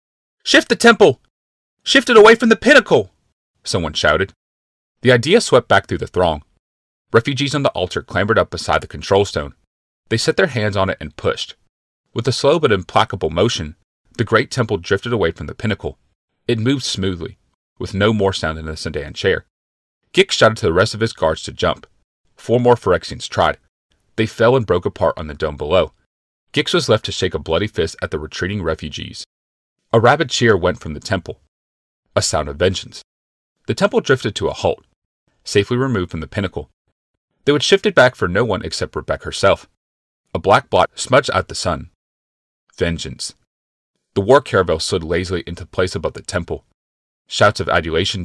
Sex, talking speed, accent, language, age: male, 185 wpm, American, English, 30-49